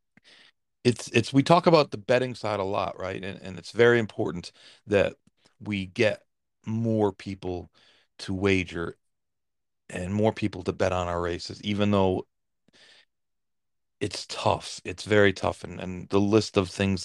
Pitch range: 95-115 Hz